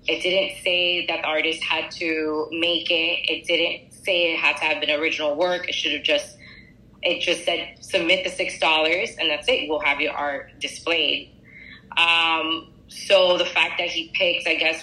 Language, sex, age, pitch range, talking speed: English, female, 20-39, 160-195 Hz, 190 wpm